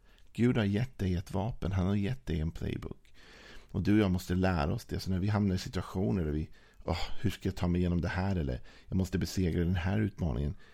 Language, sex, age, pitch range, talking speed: Swedish, male, 50-69, 80-100 Hz, 245 wpm